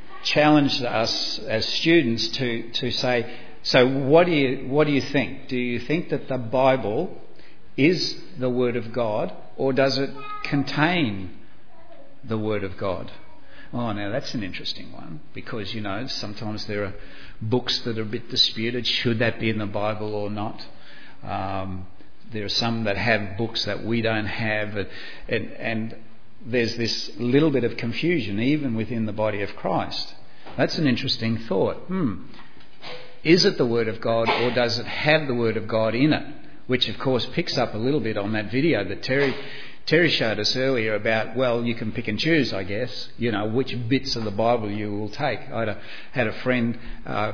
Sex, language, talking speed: male, English, 190 wpm